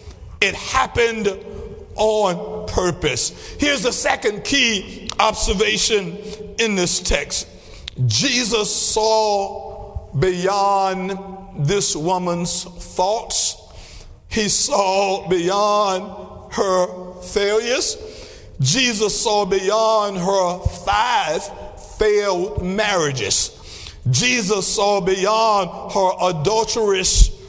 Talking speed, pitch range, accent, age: 75 wpm, 200-245 Hz, American, 60-79